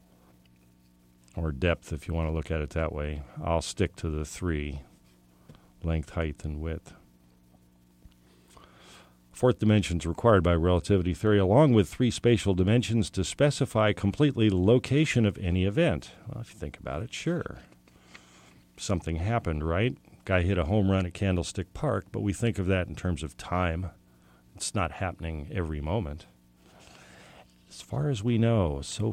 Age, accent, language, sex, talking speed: 50-69, American, English, male, 160 wpm